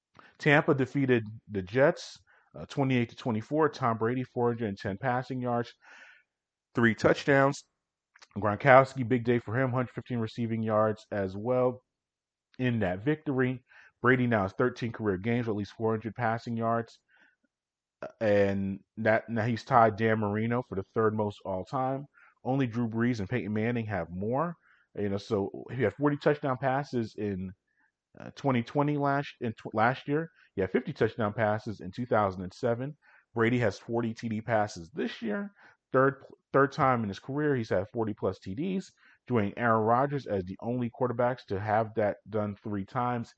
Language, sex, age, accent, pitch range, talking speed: English, male, 30-49, American, 105-130 Hz, 155 wpm